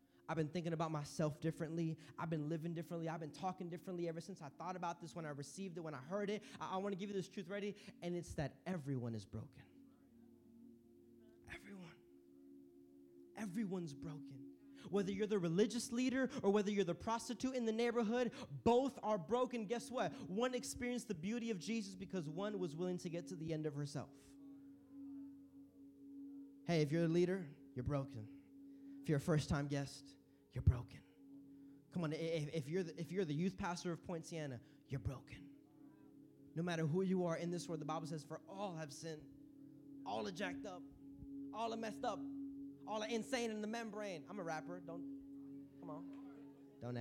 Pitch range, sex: 140-215 Hz, male